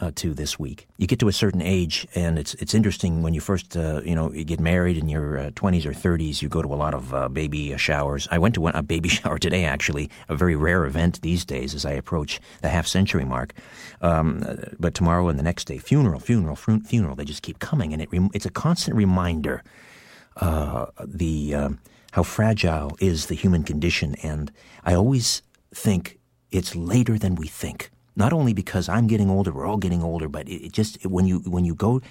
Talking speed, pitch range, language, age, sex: 225 wpm, 80-100 Hz, English, 50-69, male